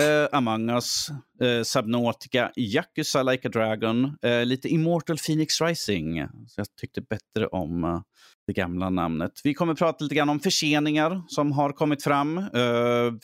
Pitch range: 110-150 Hz